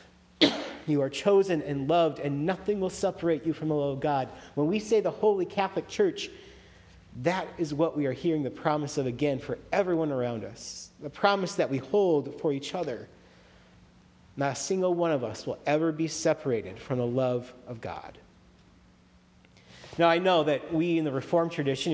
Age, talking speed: 40-59, 185 wpm